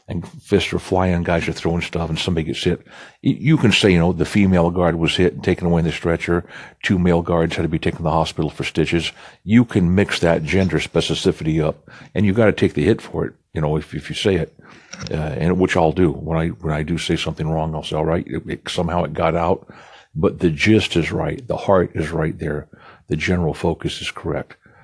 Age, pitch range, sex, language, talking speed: 60-79, 80-95 Hz, male, English, 245 wpm